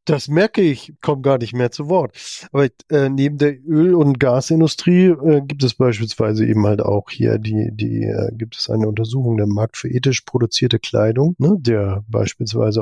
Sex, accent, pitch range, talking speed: male, German, 110-140 Hz, 185 wpm